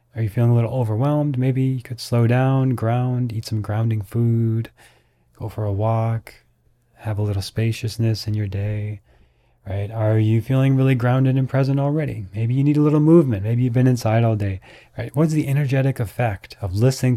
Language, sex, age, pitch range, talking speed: English, male, 20-39, 105-125 Hz, 190 wpm